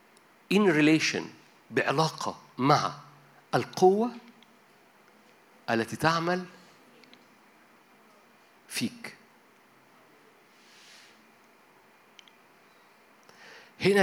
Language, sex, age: Arabic, male, 50-69